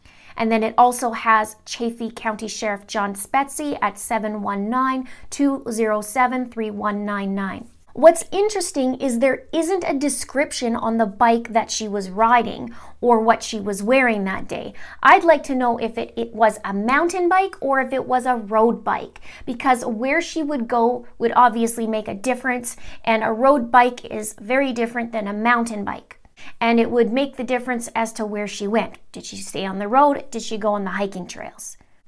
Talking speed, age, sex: 180 wpm, 30-49, female